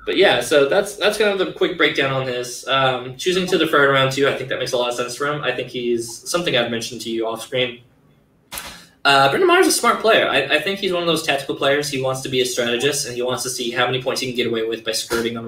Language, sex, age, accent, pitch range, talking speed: English, male, 20-39, American, 120-150 Hz, 300 wpm